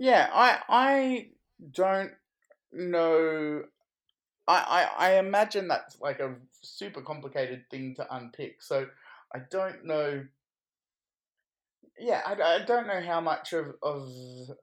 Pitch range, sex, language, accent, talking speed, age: 120-150 Hz, male, English, Australian, 125 wpm, 20-39